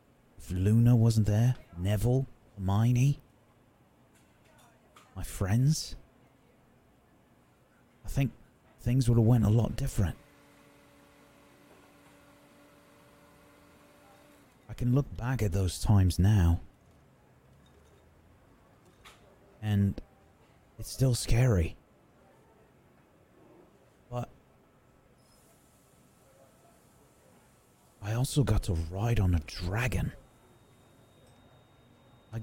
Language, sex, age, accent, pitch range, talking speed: English, male, 30-49, British, 95-125 Hz, 70 wpm